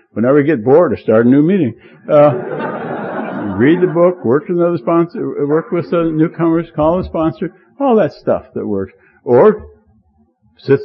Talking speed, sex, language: 170 wpm, male, English